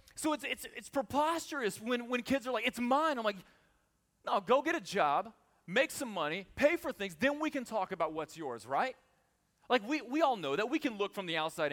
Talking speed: 230 wpm